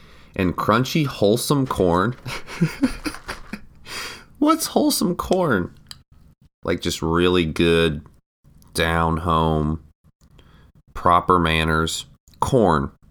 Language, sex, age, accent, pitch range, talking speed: English, male, 40-59, American, 75-90 Hz, 75 wpm